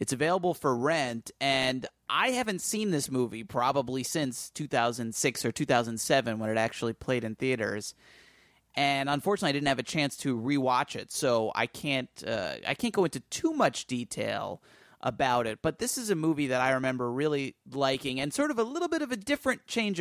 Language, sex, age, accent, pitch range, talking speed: English, male, 30-49, American, 125-175 Hz, 190 wpm